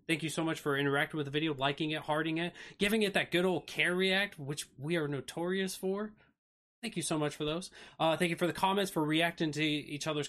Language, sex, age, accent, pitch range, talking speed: English, male, 20-39, American, 135-175 Hz, 245 wpm